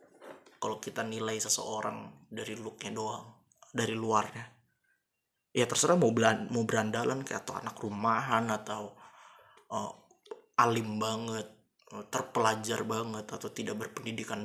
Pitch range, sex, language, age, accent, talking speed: 110-120 Hz, male, Indonesian, 20-39, native, 105 wpm